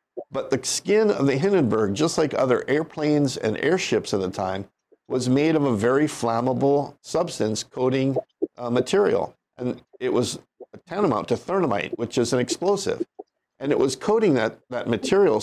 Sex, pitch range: male, 115-140 Hz